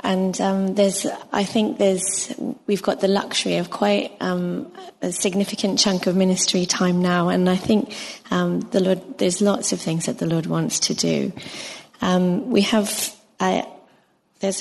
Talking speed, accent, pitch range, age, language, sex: 170 wpm, British, 180-205 Hz, 20-39, English, female